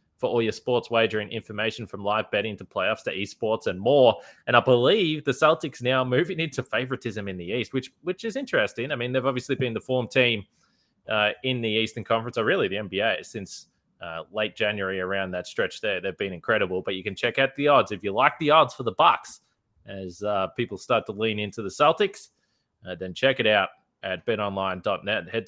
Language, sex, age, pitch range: English, male, 20-39, 95-125 Hz